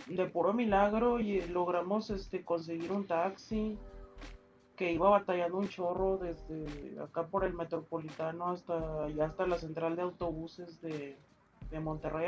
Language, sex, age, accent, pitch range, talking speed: Spanish, male, 30-49, Mexican, 165-200 Hz, 135 wpm